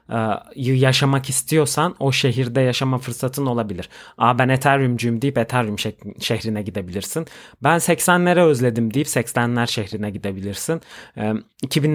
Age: 30-49